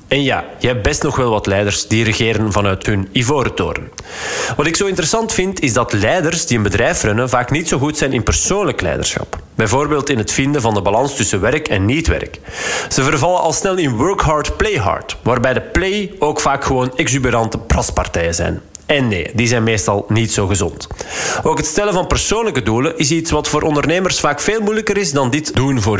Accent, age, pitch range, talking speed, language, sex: Dutch, 40-59, 110-155 Hz, 210 wpm, Dutch, male